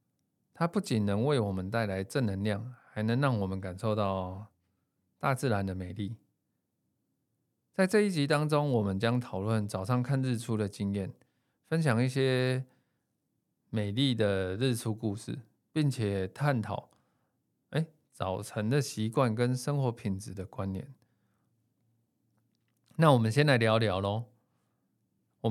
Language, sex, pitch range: Chinese, male, 105-130 Hz